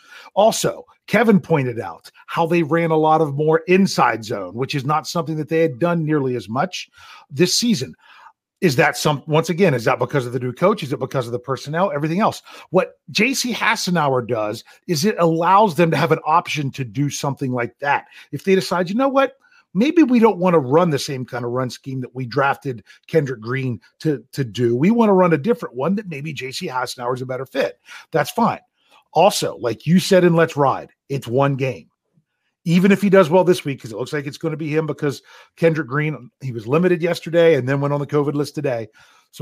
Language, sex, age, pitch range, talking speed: English, male, 40-59, 135-180 Hz, 225 wpm